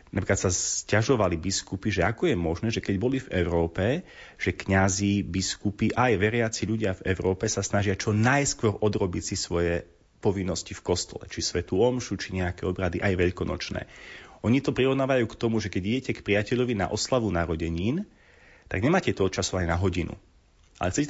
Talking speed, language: 175 wpm, Slovak